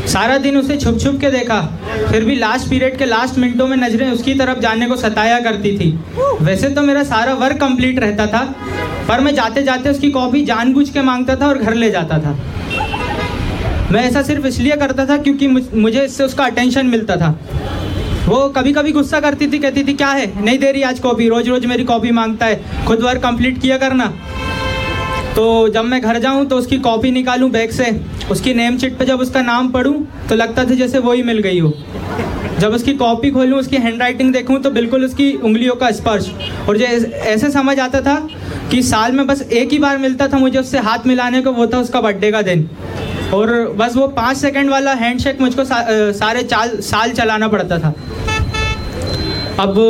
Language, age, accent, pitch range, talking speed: Hindi, 20-39, native, 220-265 Hz, 195 wpm